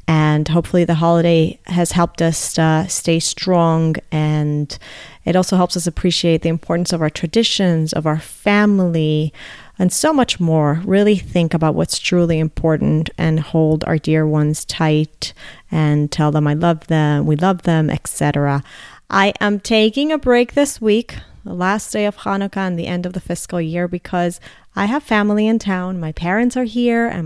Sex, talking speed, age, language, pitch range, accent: female, 175 wpm, 30-49, English, 165-205 Hz, American